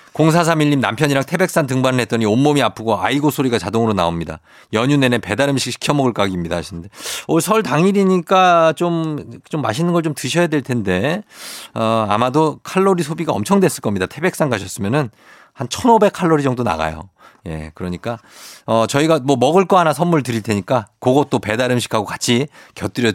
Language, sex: Korean, male